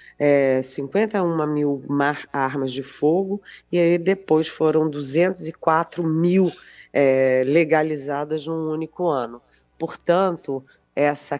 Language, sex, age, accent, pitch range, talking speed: Portuguese, female, 40-59, Brazilian, 140-175 Hz, 90 wpm